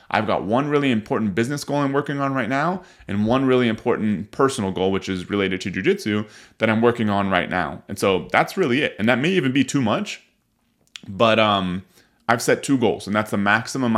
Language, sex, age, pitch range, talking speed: English, male, 30-49, 100-125 Hz, 220 wpm